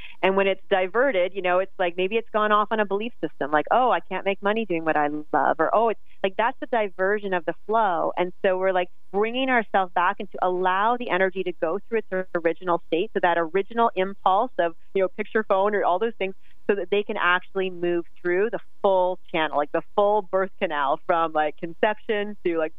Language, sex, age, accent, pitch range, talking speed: English, female, 30-49, American, 170-210 Hz, 230 wpm